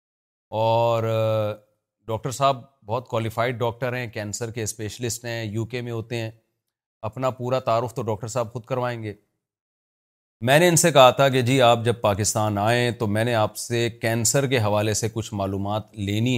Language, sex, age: Urdu, male, 30-49